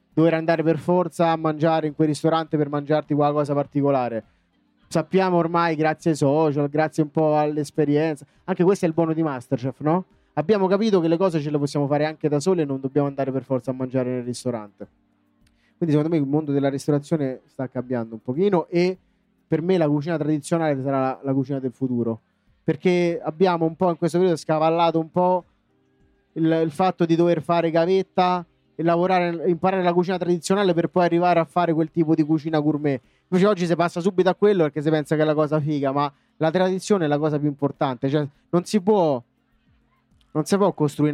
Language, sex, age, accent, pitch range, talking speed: Italian, male, 20-39, native, 145-175 Hz, 200 wpm